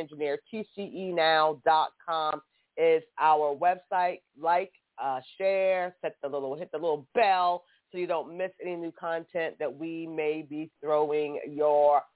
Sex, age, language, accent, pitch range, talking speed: female, 30-49, English, American, 160-225 Hz, 140 wpm